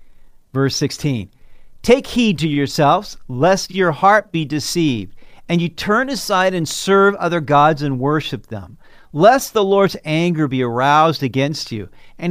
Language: English